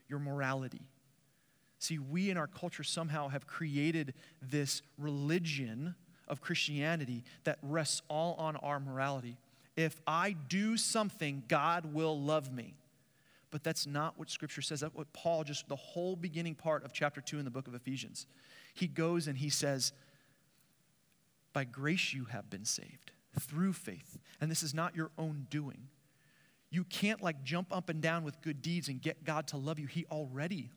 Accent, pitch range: American, 140-170 Hz